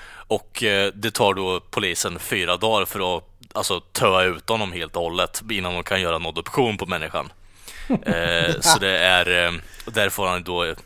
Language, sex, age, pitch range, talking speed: Swedish, male, 20-39, 90-110 Hz, 190 wpm